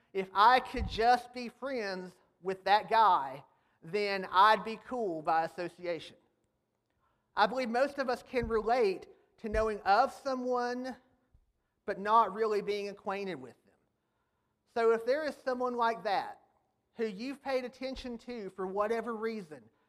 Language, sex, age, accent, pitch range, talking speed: English, male, 40-59, American, 195-245 Hz, 145 wpm